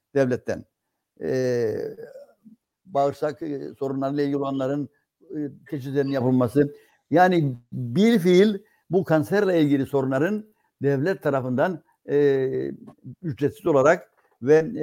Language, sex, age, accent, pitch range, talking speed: Turkish, male, 60-79, native, 135-170 Hz, 80 wpm